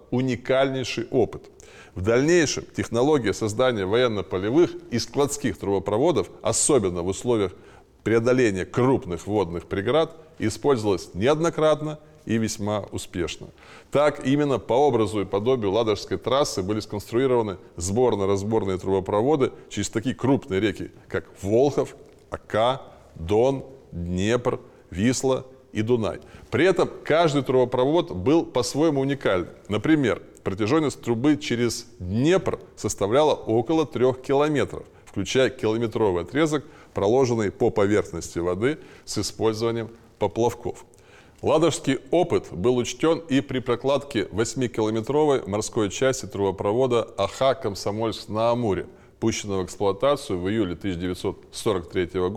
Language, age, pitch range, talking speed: Russian, 20-39, 100-135 Hz, 110 wpm